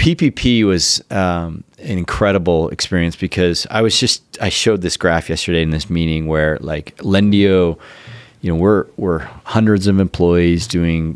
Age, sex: 30-49, male